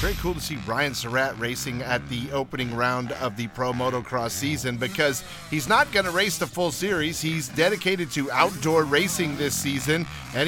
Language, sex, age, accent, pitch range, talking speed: English, male, 40-59, American, 145-185 Hz, 190 wpm